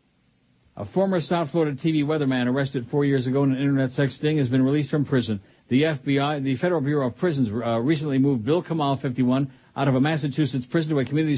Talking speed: 215 wpm